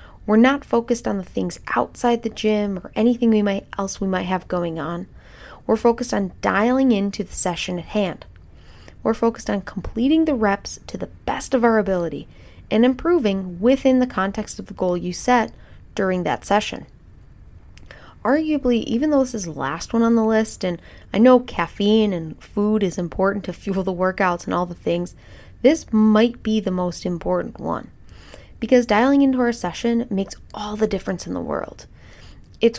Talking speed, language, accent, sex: 185 wpm, English, American, female